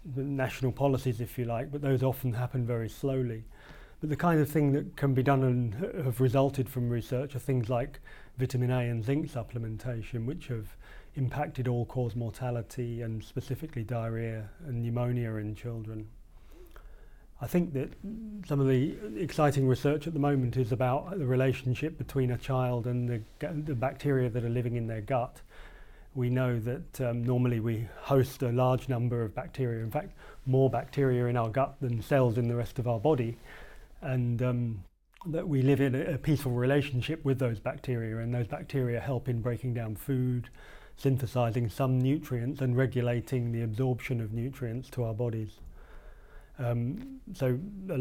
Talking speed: 170 wpm